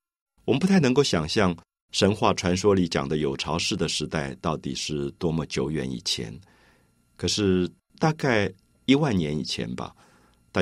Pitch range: 80-110 Hz